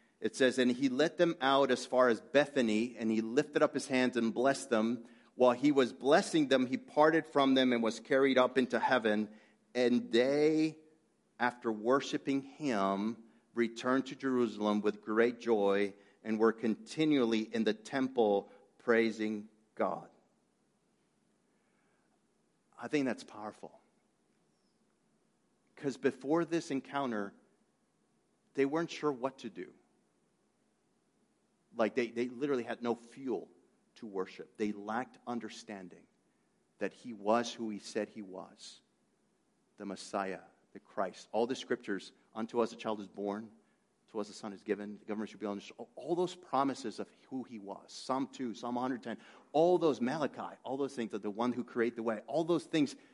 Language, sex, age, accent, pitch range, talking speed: English, male, 50-69, American, 110-135 Hz, 155 wpm